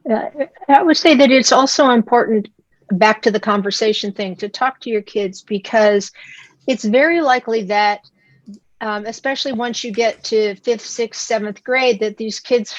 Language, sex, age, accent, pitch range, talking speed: English, female, 50-69, American, 205-260 Hz, 170 wpm